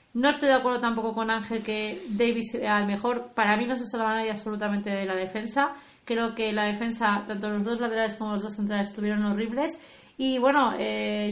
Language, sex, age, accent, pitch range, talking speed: English, female, 20-39, Spanish, 205-245 Hz, 195 wpm